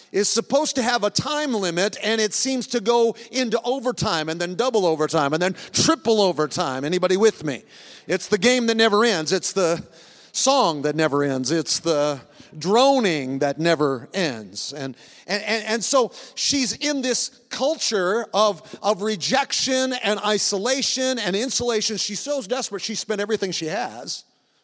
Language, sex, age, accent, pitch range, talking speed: English, male, 50-69, American, 180-235 Hz, 165 wpm